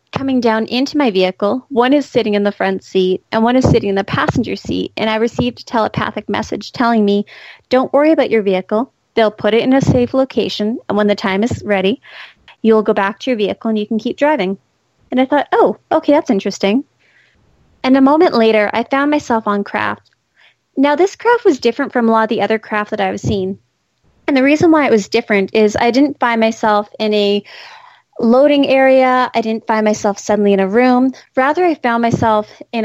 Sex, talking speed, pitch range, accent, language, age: female, 215 wpm, 210-270 Hz, American, English, 30-49